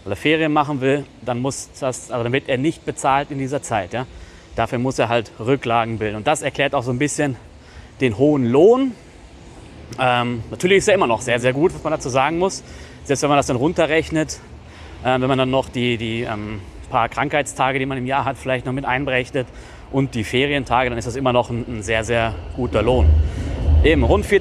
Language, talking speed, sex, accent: German, 215 wpm, male, German